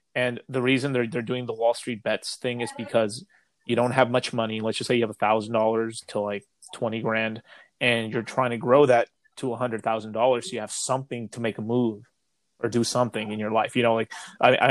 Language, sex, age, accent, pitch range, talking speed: English, male, 30-49, American, 110-125 Hz, 220 wpm